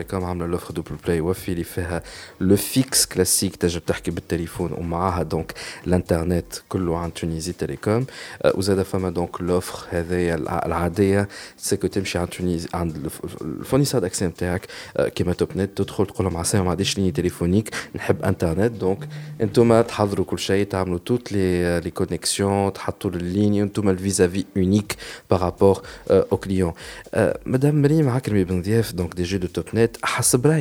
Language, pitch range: Arabic, 90-115 Hz